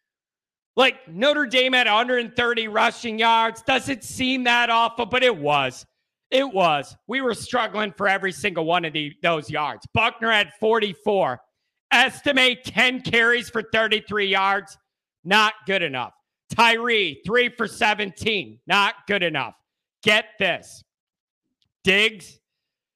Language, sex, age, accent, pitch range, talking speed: English, male, 40-59, American, 205-250 Hz, 125 wpm